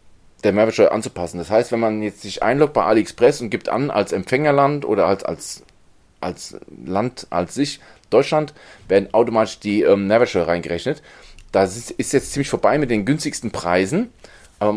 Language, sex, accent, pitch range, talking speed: German, male, German, 95-130 Hz, 170 wpm